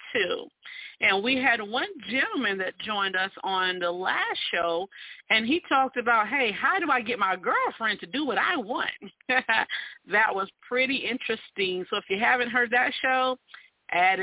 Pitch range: 180-275 Hz